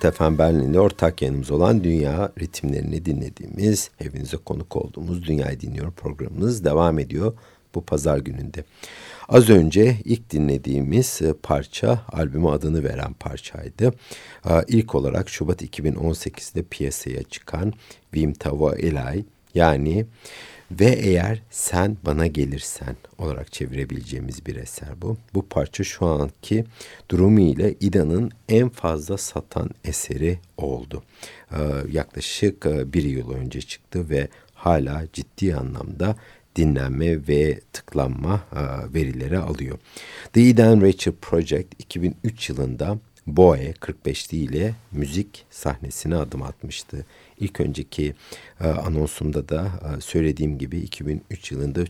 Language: Turkish